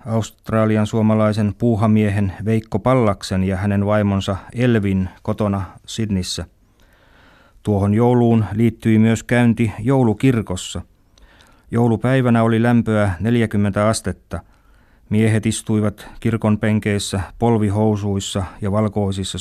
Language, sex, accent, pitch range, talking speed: Finnish, male, native, 95-110 Hz, 85 wpm